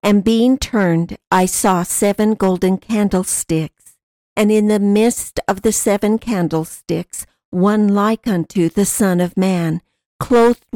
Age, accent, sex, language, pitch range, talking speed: 60-79, American, female, English, 180-215 Hz, 135 wpm